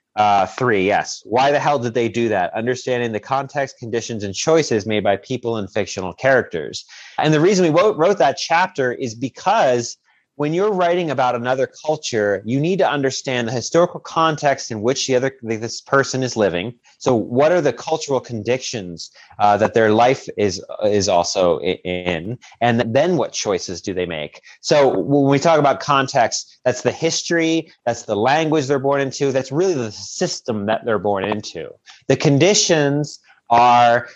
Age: 30-49